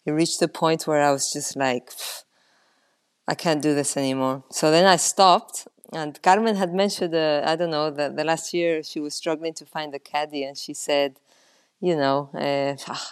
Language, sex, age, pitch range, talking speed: English, female, 20-39, 150-190 Hz, 195 wpm